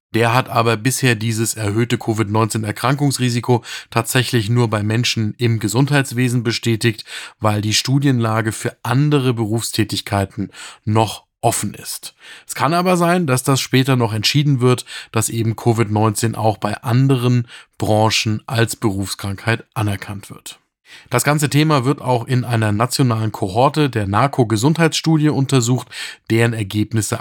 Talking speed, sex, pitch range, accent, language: 130 wpm, male, 110-135 Hz, German, German